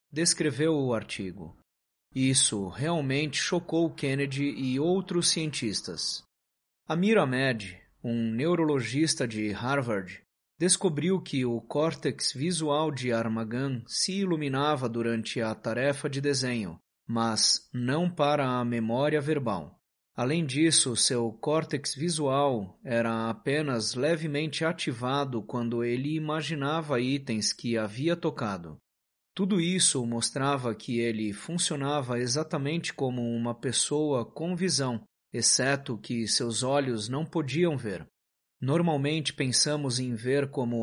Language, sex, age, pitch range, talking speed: Portuguese, male, 30-49, 115-150 Hz, 110 wpm